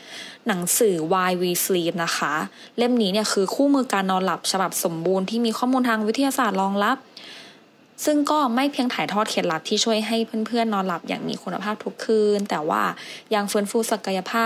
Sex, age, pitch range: female, 20-39, 185-235 Hz